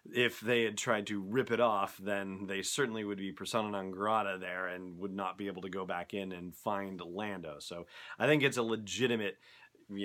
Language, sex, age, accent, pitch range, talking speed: English, male, 30-49, American, 95-125 Hz, 215 wpm